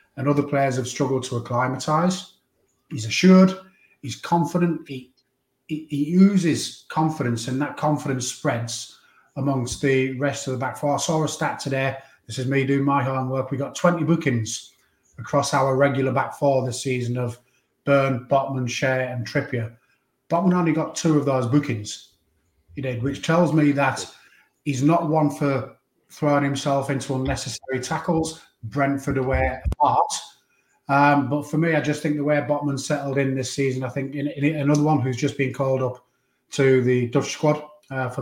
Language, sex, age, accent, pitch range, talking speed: English, male, 30-49, British, 130-145 Hz, 175 wpm